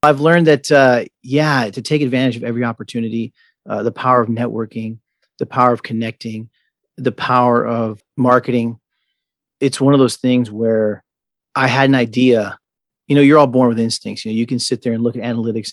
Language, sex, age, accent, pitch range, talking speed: English, male, 40-59, American, 115-130 Hz, 190 wpm